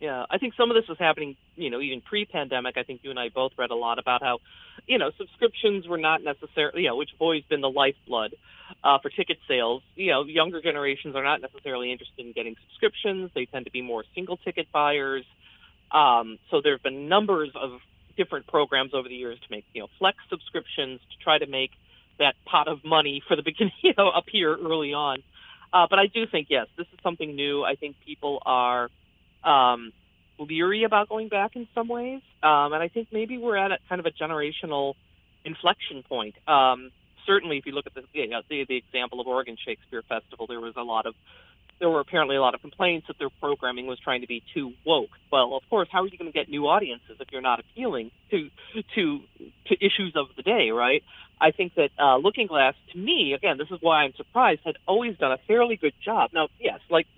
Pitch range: 130-180 Hz